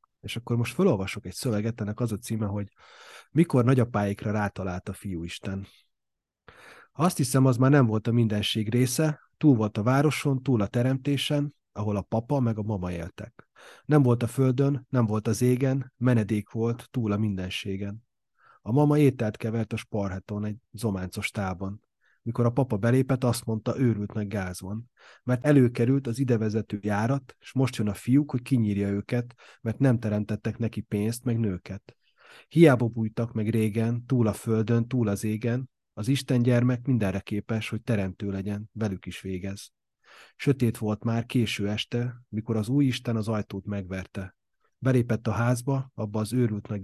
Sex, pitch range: male, 105-125 Hz